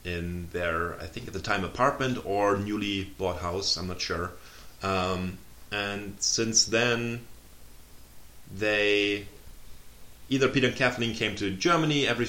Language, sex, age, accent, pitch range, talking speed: English, male, 30-49, German, 80-100 Hz, 135 wpm